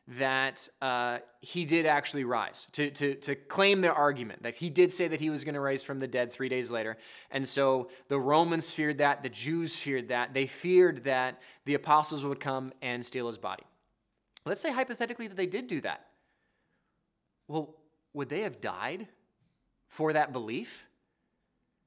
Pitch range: 135-180 Hz